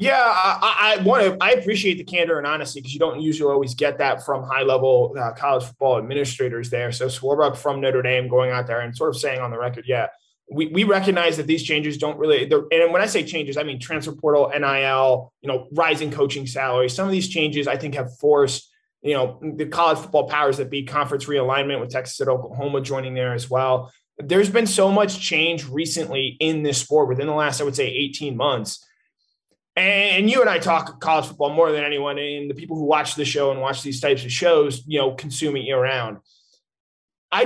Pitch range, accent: 130-165 Hz, American